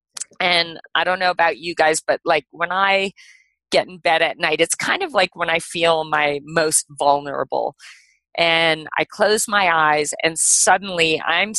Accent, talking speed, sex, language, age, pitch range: American, 175 wpm, female, English, 40-59, 165-215 Hz